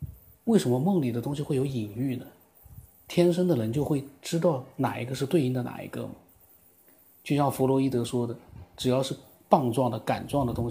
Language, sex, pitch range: Chinese, male, 105-130 Hz